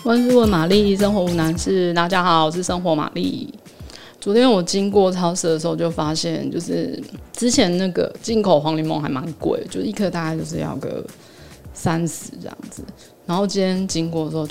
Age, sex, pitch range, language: 20-39, female, 160-200 Hz, Chinese